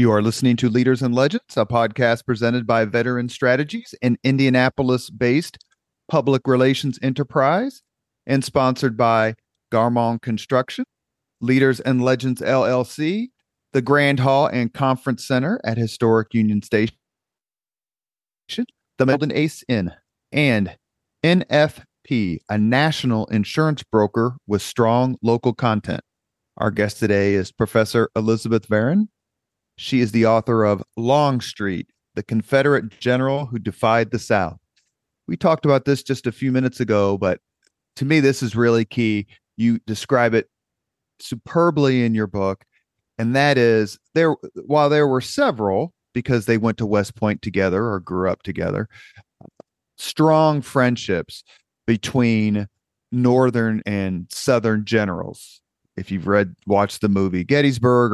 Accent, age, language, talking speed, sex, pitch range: American, 40-59, English, 130 wpm, male, 110-135 Hz